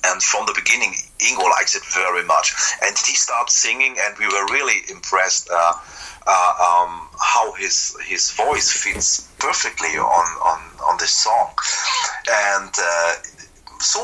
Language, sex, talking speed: English, male, 150 wpm